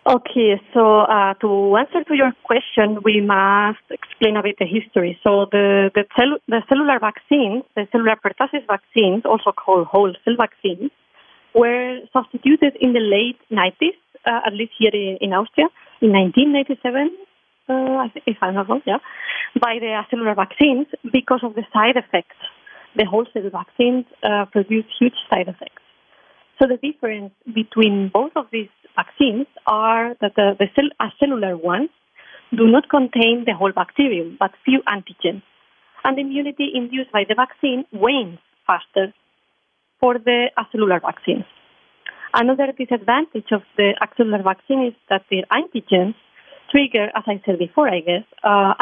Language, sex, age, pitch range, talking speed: English, female, 30-49, 205-260 Hz, 155 wpm